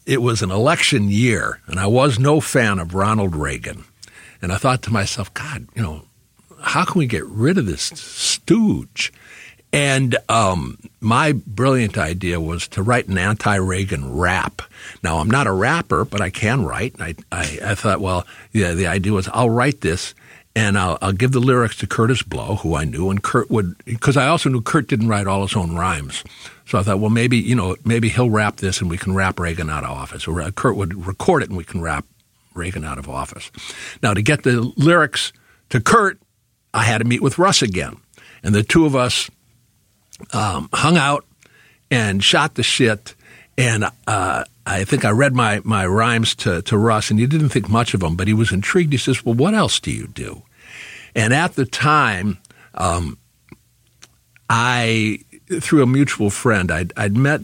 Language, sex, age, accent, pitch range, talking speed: English, male, 60-79, American, 95-125 Hz, 200 wpm